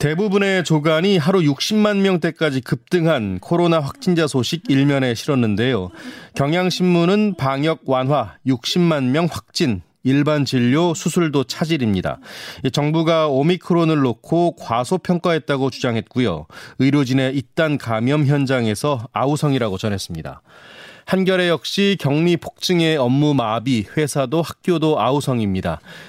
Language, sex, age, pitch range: Korean, male, 30-49, 125-165 Hz